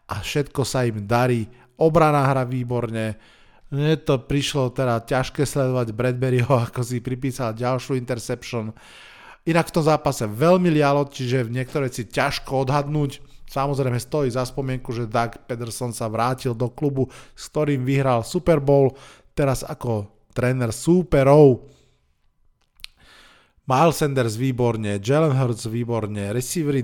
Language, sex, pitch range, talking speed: Slovak, male, 115-140 Hz, 125 wpm